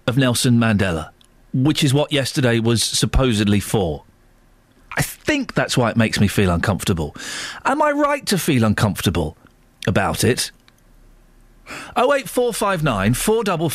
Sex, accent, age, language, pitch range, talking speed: male, British, 40-59, English, 125-205 Hz, 135 wpm